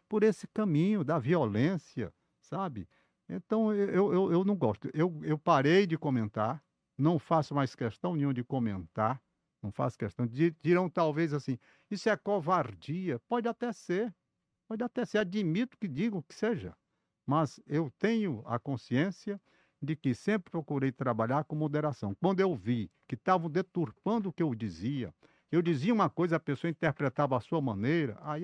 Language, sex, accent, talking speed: Portuguese, male, Brazilian, 165 wpm